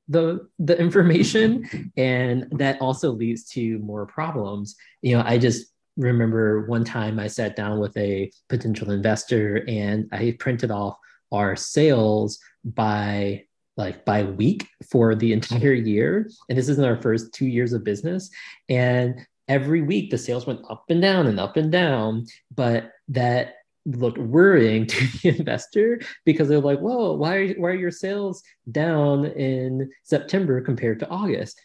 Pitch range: 110-155 Hz